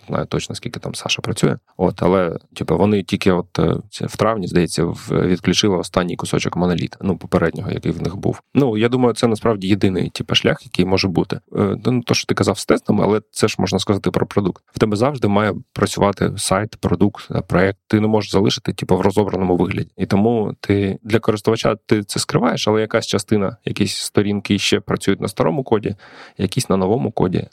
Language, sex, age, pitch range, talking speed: Ukrainian, male, 20-39, 95-110 Hz, 195 wpm